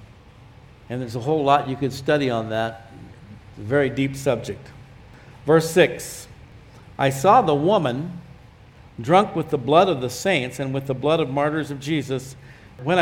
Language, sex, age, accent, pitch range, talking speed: English, male, 60-79, American, 125-165 Hz, 170 wpm